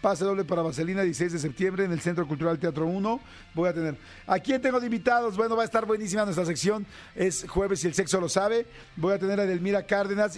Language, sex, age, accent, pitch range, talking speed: Spanish, male, 50-69, Mexican, 165-210 Hz, 235 wpm